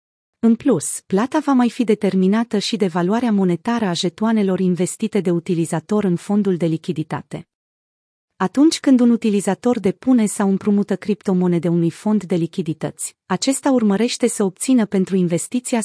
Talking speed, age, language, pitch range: 145 wpm, 30-49, Romanian, 175-225 Hz